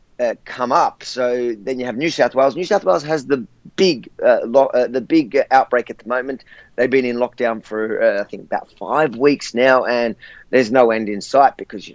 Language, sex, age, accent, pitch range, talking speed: English, male, 30-49, Australian, 120-140 Hz, 225 wpm